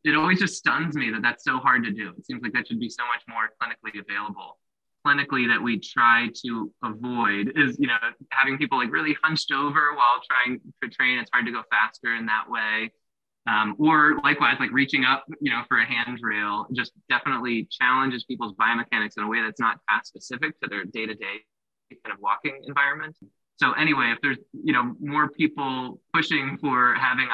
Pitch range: 110-145 Hz